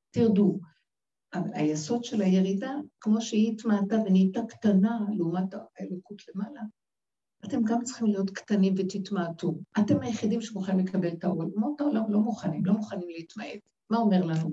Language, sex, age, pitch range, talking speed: Hebrew, female, 60-79, 190-240 Hz, 135 wpm